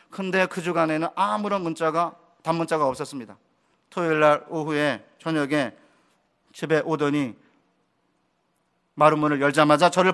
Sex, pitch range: male, 160-210 Hz